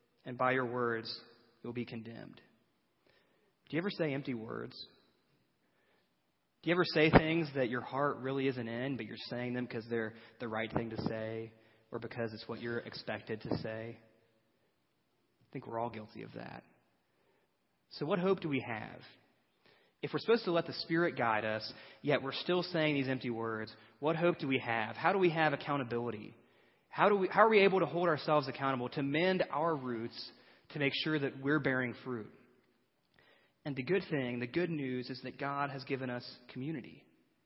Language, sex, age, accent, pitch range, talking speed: English, male, 30-49, American, 115-150 Hz, 185 wpm